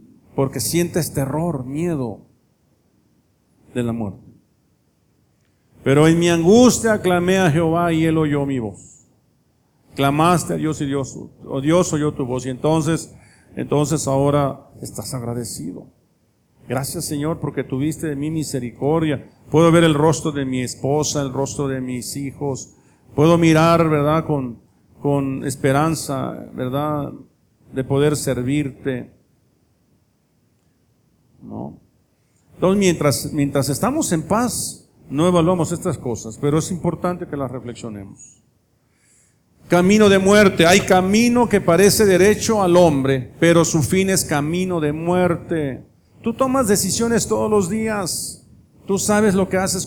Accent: Mexican